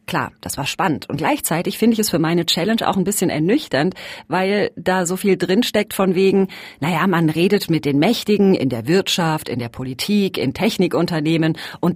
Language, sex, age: German, female, 40-59